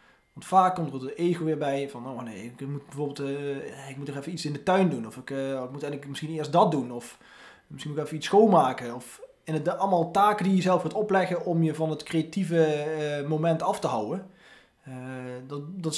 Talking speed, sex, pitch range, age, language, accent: 245 wpm, male, 140-175 Hz, 20-39, Dutch, Dutch